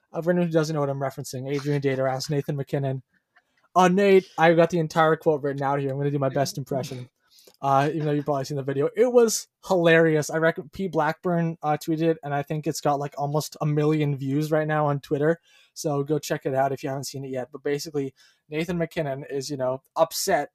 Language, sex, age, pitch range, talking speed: English, male, 20-39, 145-185 Hz, 235 wpm